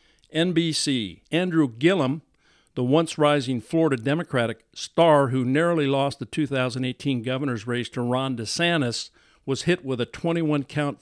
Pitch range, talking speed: 125-155 Hz, 125 wpm